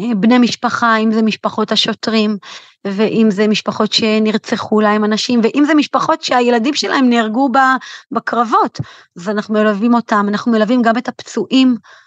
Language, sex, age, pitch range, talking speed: Hebrew, female, 30-49, 220-290 Hz, 140 wpm